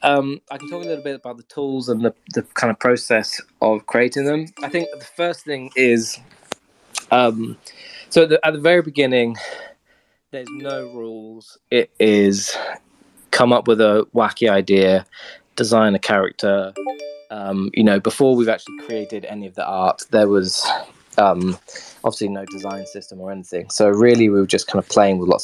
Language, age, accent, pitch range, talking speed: English, 20-39, British, 105-135 Hz, 180 wpm